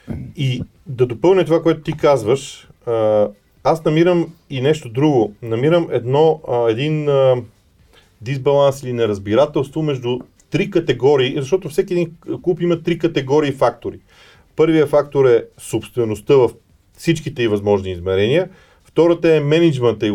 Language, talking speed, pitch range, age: Bulgarian, 125 wpm, 120-160 Hz, 40-59